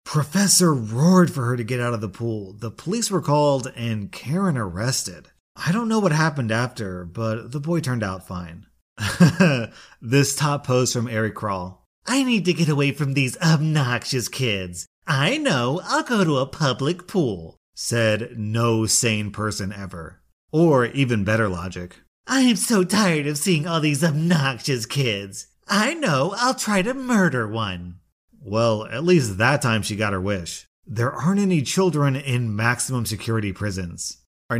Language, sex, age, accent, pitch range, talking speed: English, male, 30-49, American, 100-155 Hz, 165 wpm